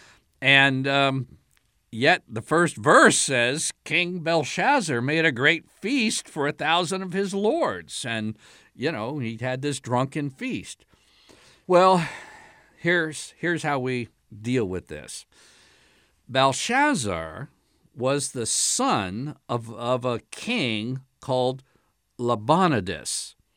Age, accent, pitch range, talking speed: 50-69, American, 110-150 Hz, 115 wpm